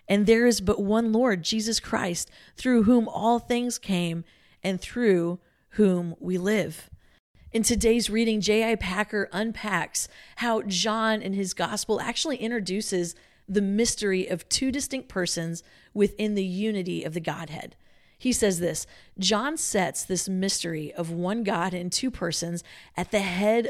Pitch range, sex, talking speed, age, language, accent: 175-225 Hz, female, 150 wpm, 40-59, English, American